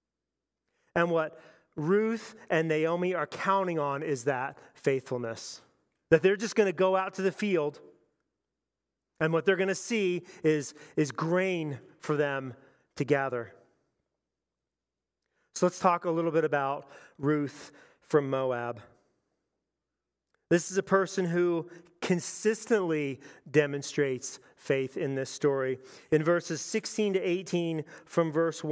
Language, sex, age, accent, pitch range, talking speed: English, male, 40-59, American, 145-190 Hz, 130 wpm